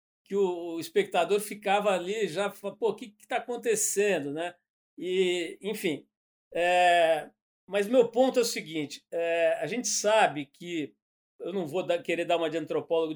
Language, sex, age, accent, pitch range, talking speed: Portuguese, male, 50-69, Brazilian, 165-220 Hz, 165 wpm